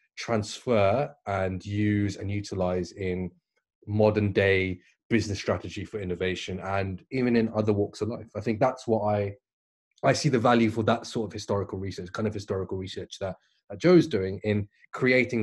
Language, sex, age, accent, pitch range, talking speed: English, male, 20-39, British, 100-135 Hz, 170 wpm